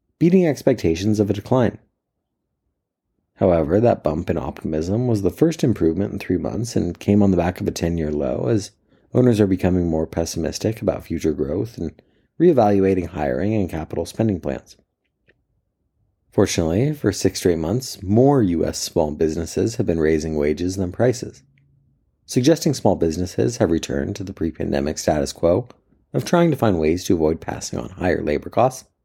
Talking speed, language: 165 wpm, English